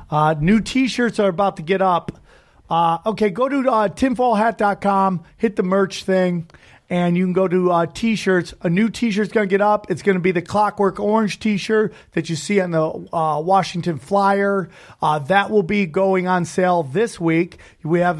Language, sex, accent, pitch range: English, male, American, 165-195 Hz